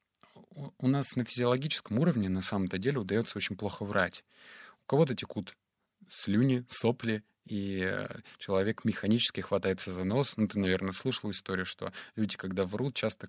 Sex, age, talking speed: male, 20-39, 150 wpm